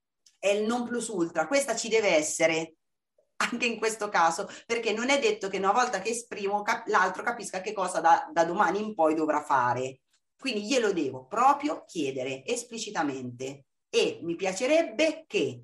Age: 30-49